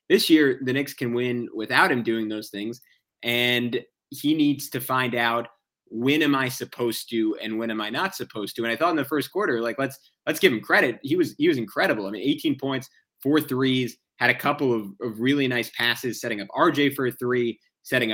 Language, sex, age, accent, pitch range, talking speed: English, male, 20-39, American, 115-135 Hz, 225 wpm